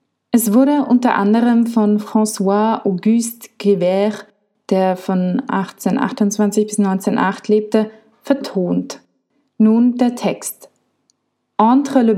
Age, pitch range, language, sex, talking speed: 20-39, 200-235 Hz, German, female, 95 wpm